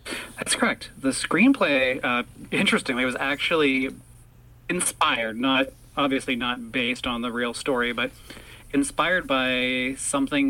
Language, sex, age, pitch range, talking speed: English, male, 30-49, 120-145 Hz, 110 wpm